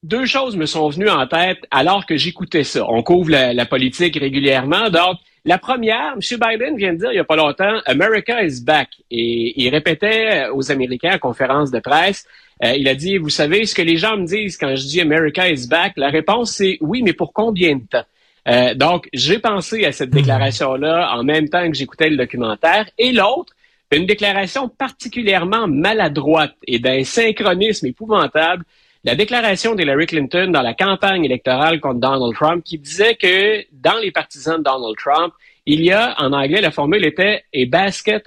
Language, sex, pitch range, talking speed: French, male, 140-205 Hz, 195 wpm